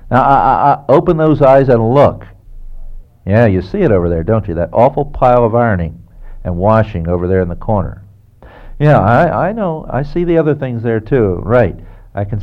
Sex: male